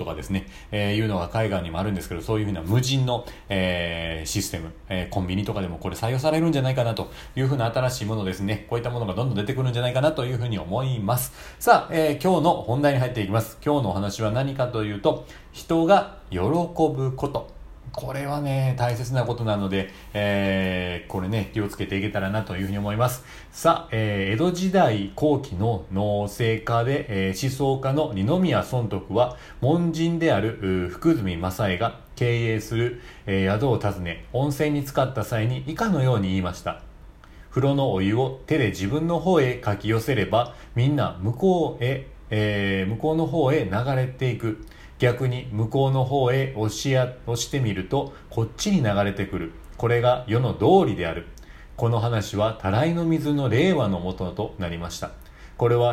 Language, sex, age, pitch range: Japanese, male, 40-59, 100-135 Hz